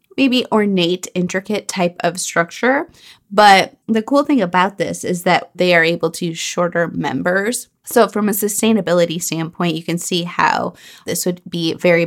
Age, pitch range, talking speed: 20-39, 165-200 Hz, 170 wpm